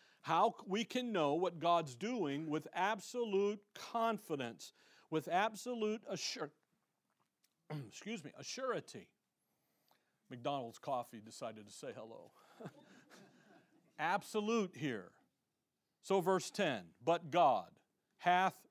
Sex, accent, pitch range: male, American, 160-210 Hz